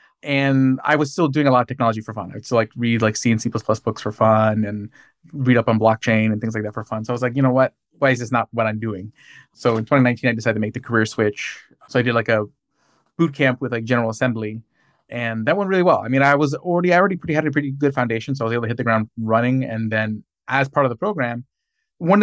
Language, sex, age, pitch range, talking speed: English, male, 20-39, 110-135 Hz, 280 wpm